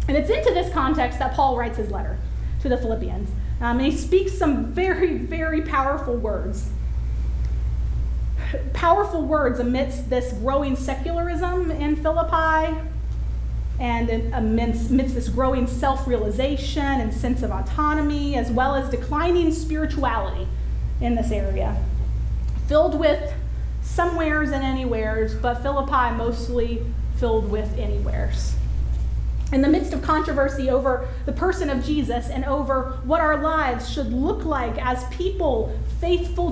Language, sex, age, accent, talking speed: English, female, 30-49, American, 130 wpm